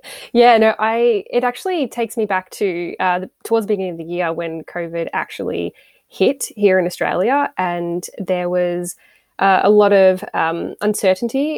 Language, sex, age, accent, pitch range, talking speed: English, female, 10-29, Australian, 175-215 Hz, 170 wpm